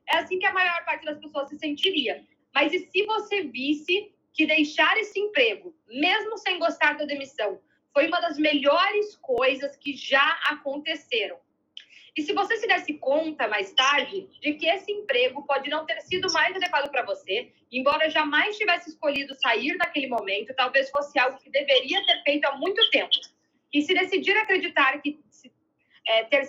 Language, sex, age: Portuguese, female, 20-39